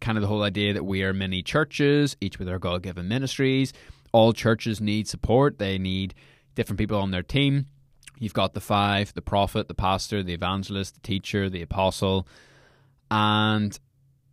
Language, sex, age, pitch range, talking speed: English, male, 20-39, 95-130 Hz, 170 wpm